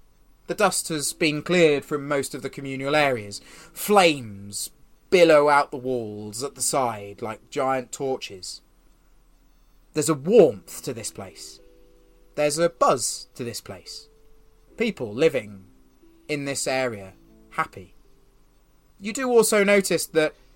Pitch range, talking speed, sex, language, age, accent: 110-160 Hz, 130 wpm, male, English, 30-49, British